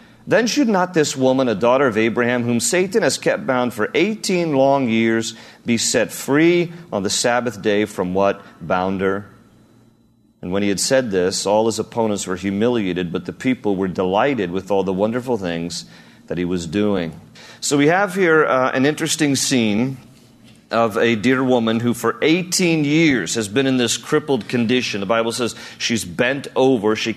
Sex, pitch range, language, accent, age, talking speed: male, 115-150 Hz, English, American, 40-59, 180 wpm